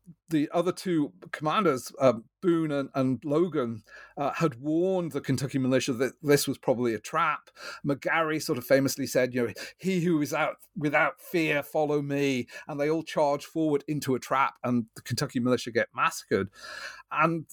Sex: male